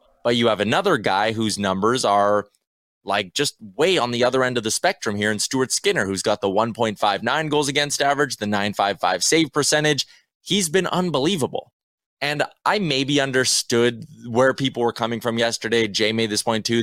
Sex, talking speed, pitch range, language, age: male, 180 wpm, 110-145 Hz, English, 20-39